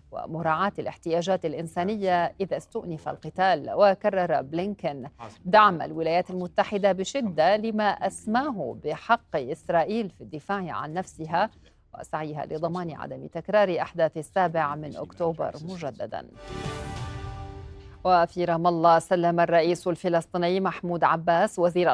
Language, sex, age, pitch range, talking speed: Arabic, female, 40-59, 160-185 Hz, 100 wpm